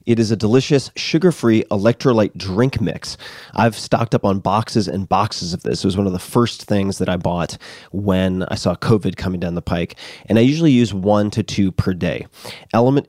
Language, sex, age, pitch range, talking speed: English, male, 30-49, 95-115 Hz, 205 wpm